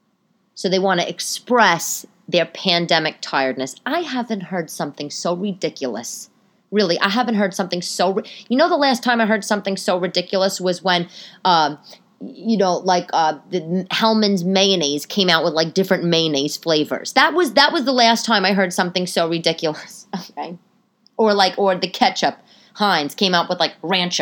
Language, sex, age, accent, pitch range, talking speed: English, female, 30-49, American, 170-220 Hz, 180 wpm